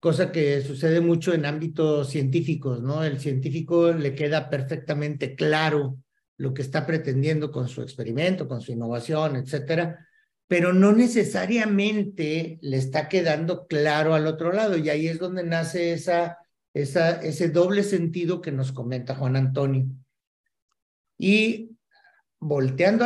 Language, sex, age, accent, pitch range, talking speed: Spanish, male, 50-69, Mexican, 145-195 Hz, 135 wpm